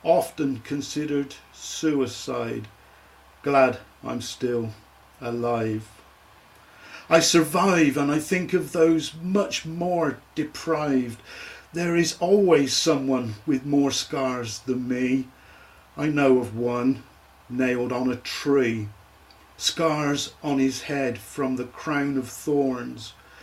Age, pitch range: 50-69, 115-150 Hz